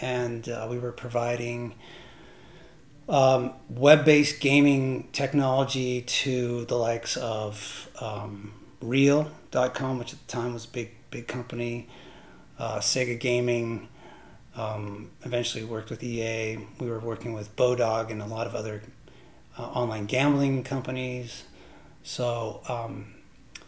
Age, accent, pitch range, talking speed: 30-49, American, 120-140 Hz, 120 wpm